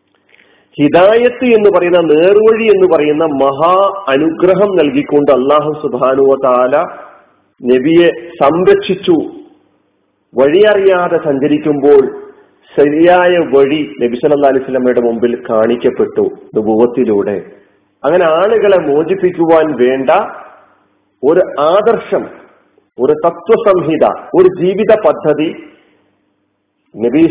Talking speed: 75 wpm